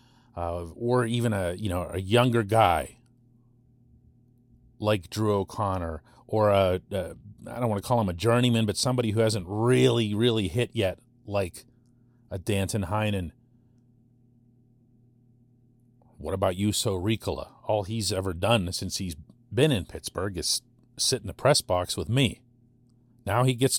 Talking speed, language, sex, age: 150 wpm, English, male, 40-59